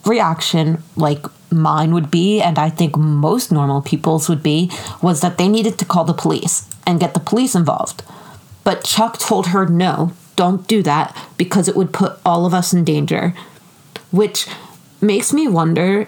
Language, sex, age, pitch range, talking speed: English, female, 30-49, 165-195 Hz, 175 wpm